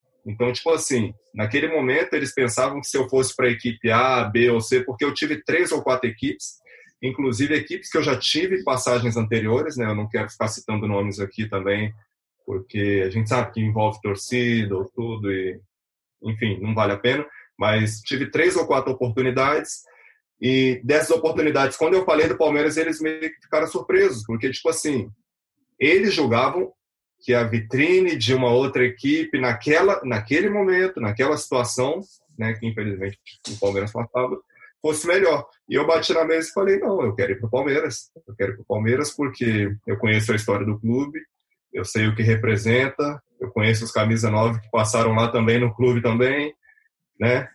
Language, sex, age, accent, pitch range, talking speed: Portuguese, male, 20-39, Brazilian, 110-145 Hz, 185 wpm